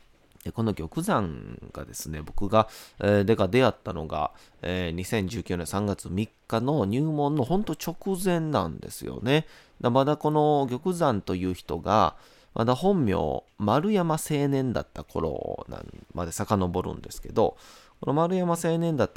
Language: Japanese